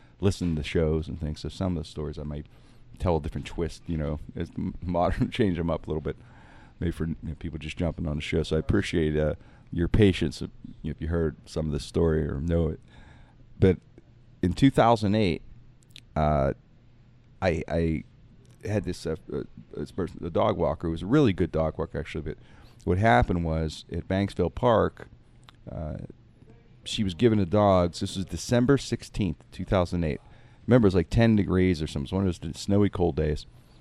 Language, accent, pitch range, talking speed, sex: English, American, 80-105 Hz, 195 wpm, male